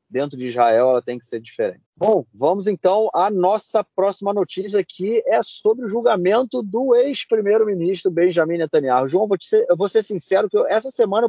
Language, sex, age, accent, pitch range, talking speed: Portuguese, male, 30-49, Brazilian, 135-195 Hz, 185 wpm